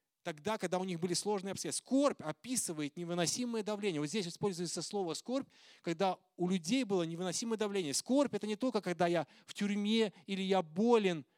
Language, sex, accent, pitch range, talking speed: Russian, male, native, 145-205 Hz, 175 wpm